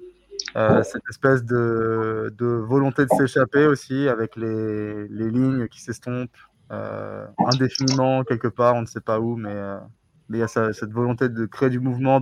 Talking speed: 175 wpm